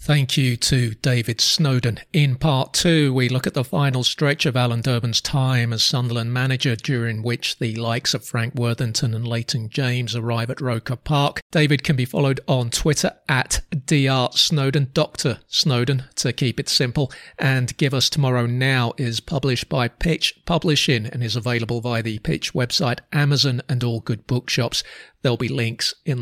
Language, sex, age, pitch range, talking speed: English, male, 40-59, 115-135 Hz, 170 wpm